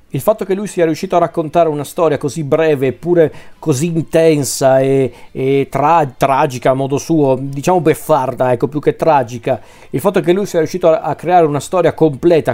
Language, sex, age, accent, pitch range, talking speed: Italian, male, 40-59, native, 130-160 Hz, 190 wpm